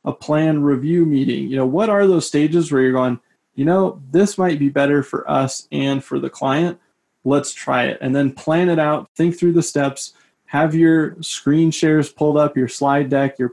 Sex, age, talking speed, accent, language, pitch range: male, 20-39, 210 wpm, American, English, 130-155 Hz